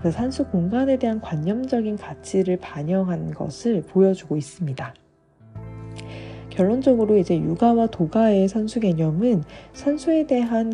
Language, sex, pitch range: Korean, female, 160-230 Hz